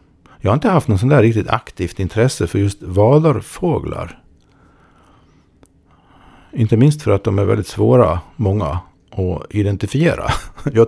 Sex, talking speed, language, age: male, 140 wpm, Swedish, 50-69